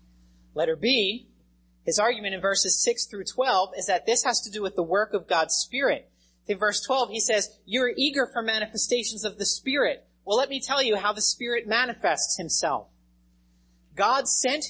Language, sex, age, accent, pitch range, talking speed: English, male, 30-49, American, 140-210 Hz, 185 wpm